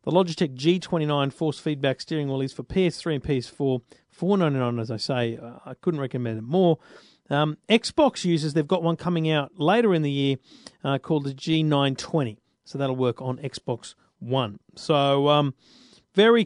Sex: male